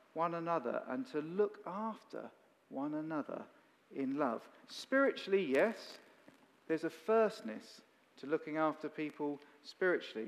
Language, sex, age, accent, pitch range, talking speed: English, male, 40-59, British, 135-205 Hz, 115 wpm